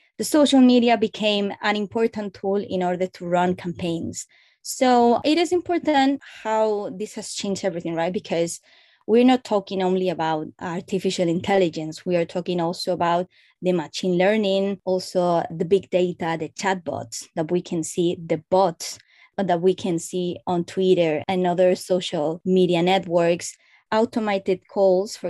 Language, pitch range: English, 180-215 Hz